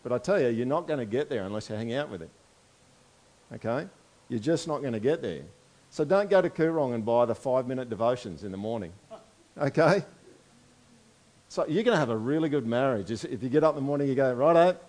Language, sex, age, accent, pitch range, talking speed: English, male, 50-69, Australian, 120-170 Hz, 235 wpm